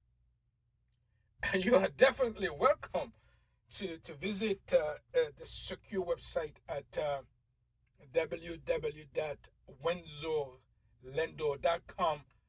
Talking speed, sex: 70 wpm, male